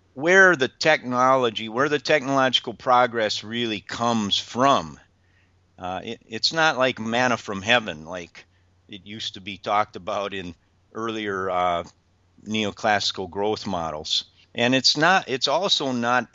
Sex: male